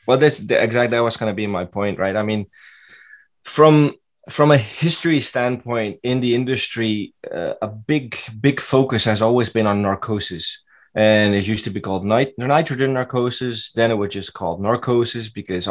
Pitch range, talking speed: 110-135 Hz, 180 wpm